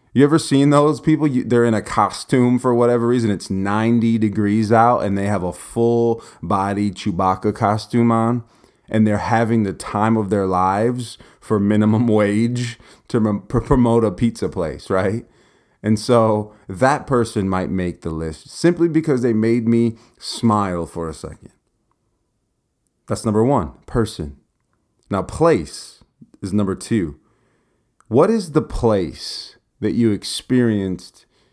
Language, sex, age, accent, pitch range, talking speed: English, male, 30-49, American, 95-120 Hz, 145 wpm